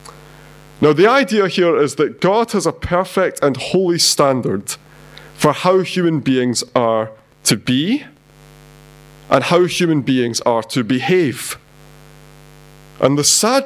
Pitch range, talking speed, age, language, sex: 135-180 Hz, 130 wpm, 30-49, English, male